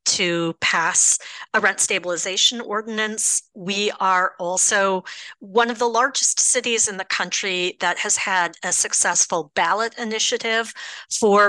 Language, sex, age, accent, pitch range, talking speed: English, female, 40-59, American, 195-255 Hz, 130 wpm